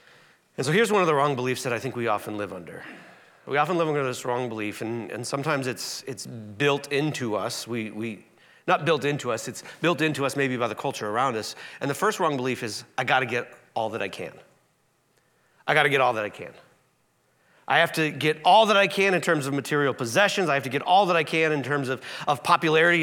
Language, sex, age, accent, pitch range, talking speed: English, male, 40-59, American, 140-205 Hz, 245 wpm